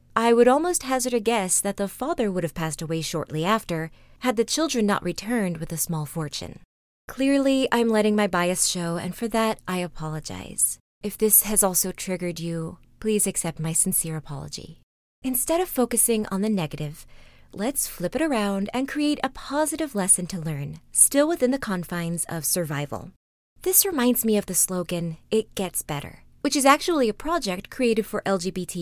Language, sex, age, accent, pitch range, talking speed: English, female, 20-39, American, 170-255 Hz, 180 wpm